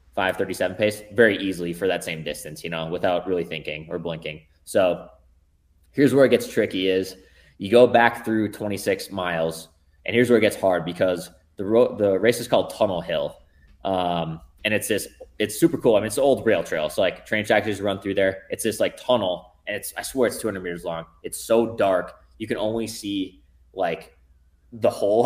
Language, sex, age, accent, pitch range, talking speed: English, male, 20-39, American, 85-110 Hz, 210 wpm